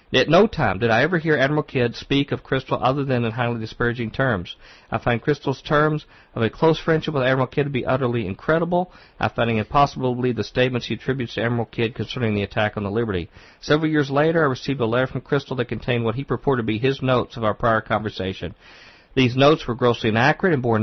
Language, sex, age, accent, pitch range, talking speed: English, male, 50-69, American, 110-140 Hz, 235 wpm